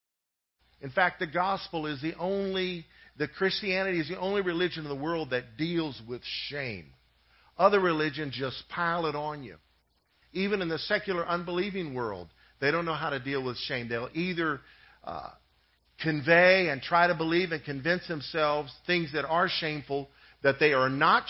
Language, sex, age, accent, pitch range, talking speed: English, male, 50-69, American, 115-180 Hz, 170 wpm